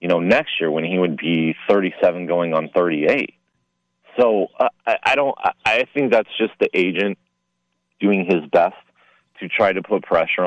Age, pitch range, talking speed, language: 30-49, 80-100 Hz, 185 wpm, English